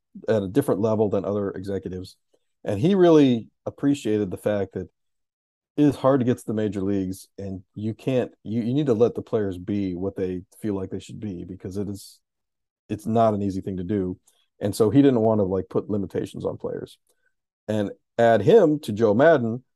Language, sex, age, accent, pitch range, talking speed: English, male, 40-59, American, 100-125 Hz, 205 wpm